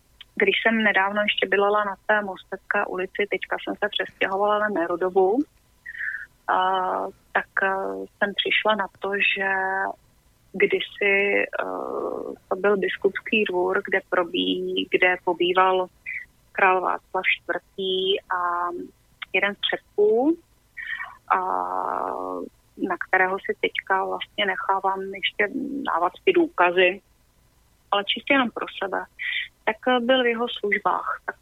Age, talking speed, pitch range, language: 30-49, 110 wpm, 195-235 Hz, Slovak